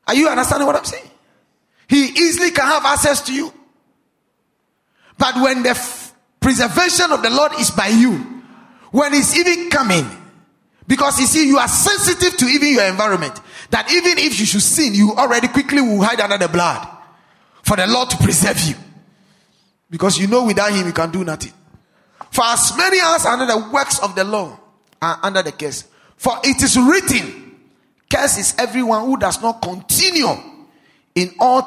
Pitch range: 210-290 Hz